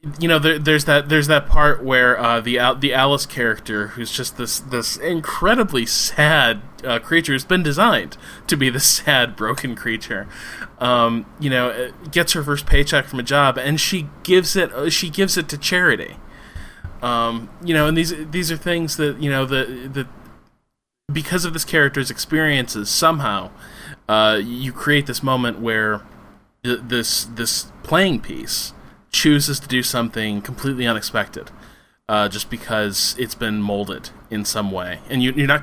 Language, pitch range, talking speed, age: English, 110-150 Hz, 165 wpm, 20-39